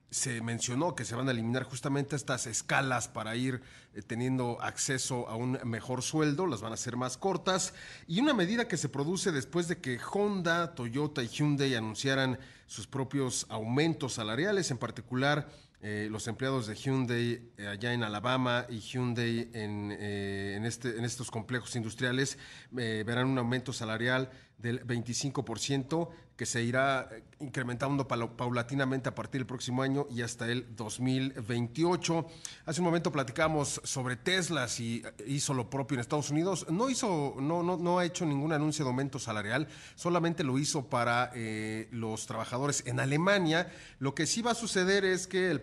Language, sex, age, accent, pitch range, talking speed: Spanish, male, 40-59, Mexican, 120-150 Hz, 165 wpm